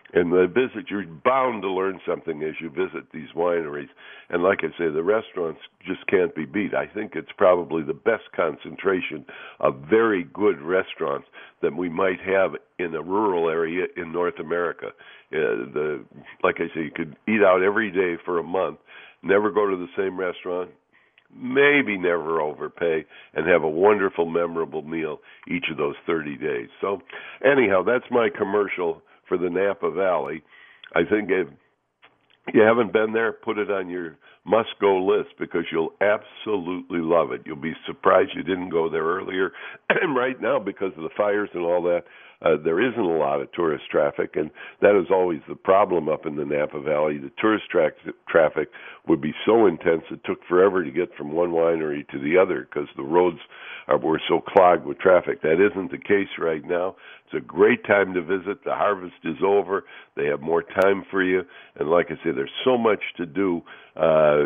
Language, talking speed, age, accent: English, 185 wpm, 60-79, American